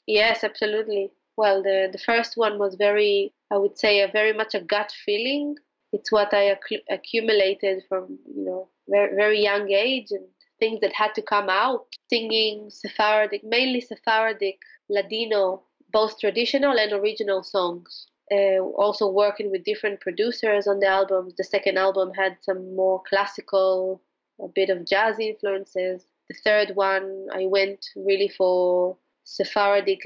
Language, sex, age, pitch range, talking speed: English, female, 20-39, 190-215 Hz, 150 wpm